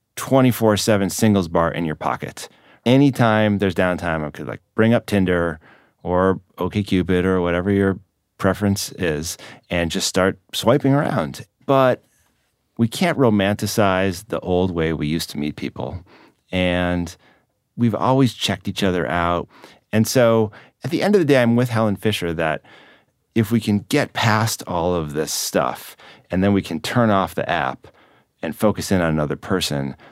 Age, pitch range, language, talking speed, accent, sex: 30-49, 80-105 Hz, English, 160 wpm, American, male